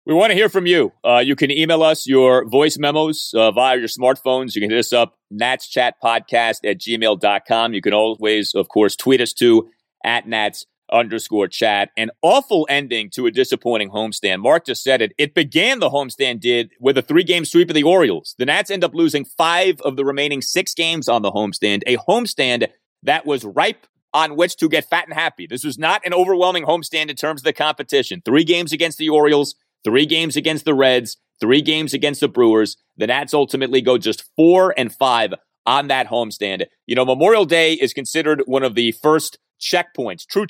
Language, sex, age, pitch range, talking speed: English, male, 30-49, 120-160 Hz, 200 wpm